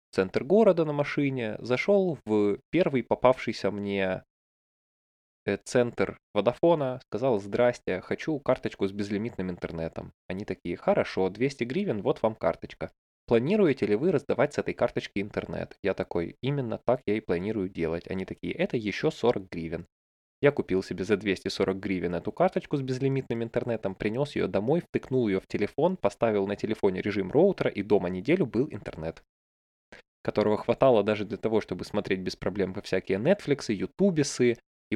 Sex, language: male, Russian